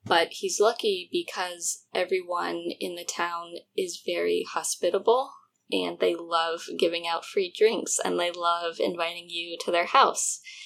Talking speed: 145 wpm